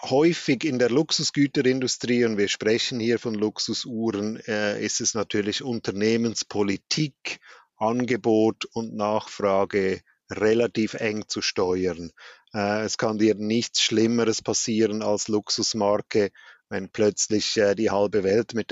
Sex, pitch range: male, 105-120 Hz